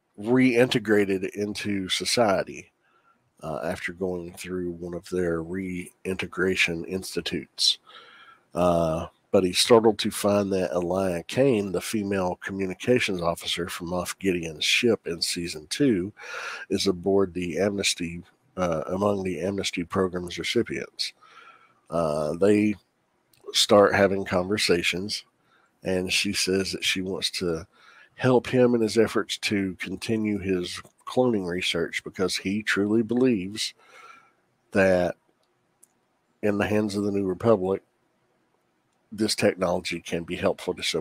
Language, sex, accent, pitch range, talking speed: English, male, American, 90-105 Hz, 120 wpm